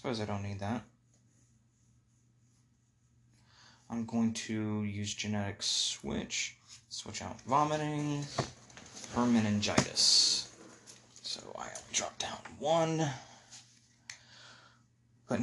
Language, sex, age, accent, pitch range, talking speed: English, male, 20-39, American, 110-120 Hz, 80 wpm